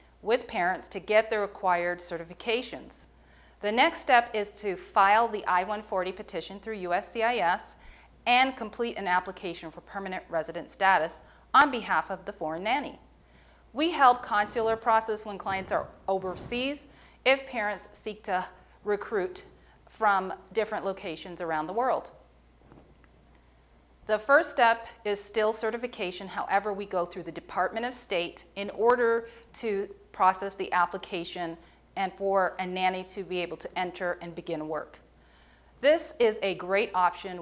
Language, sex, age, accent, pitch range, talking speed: English, female, 40-59, American, 175-220 Hz, 140 wpm